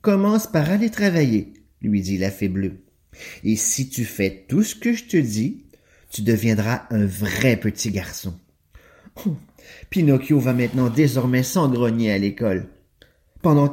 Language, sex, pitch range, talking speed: English, male, 100-160 Hz, 165 wpm